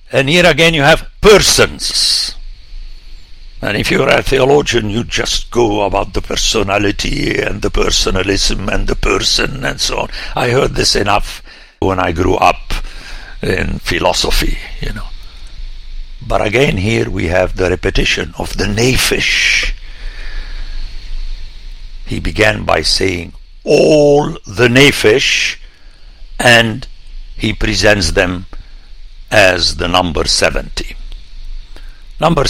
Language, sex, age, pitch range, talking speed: English, male, 60-79, 85-120 Hz, 120 wpm